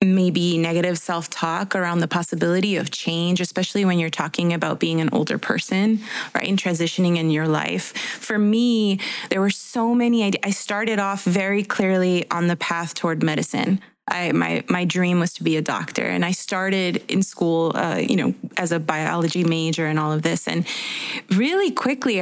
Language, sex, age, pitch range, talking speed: English, female, 20-39, 170-205 Hz, 185 wpm